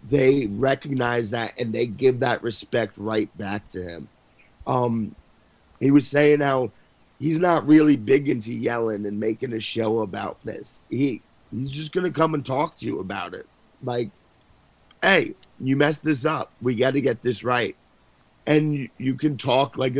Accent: American